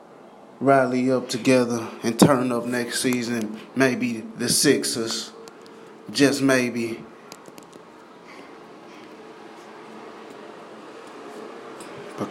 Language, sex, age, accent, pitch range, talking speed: English, male, 20-39, American, 110-120 Hz, 70 wpm